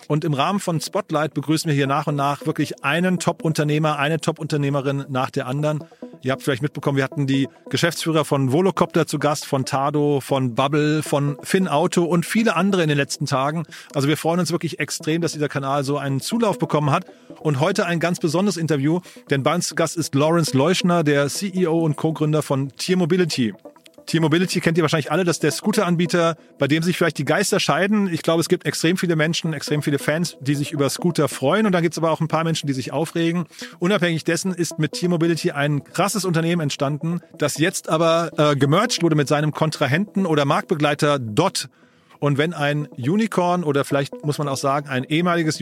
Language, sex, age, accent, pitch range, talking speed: German, male, 30-49, German, 145-170 Hz, 205 wpm